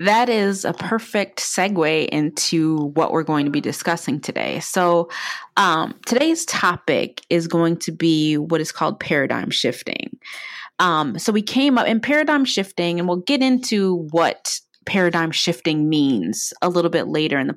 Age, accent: 30-49, American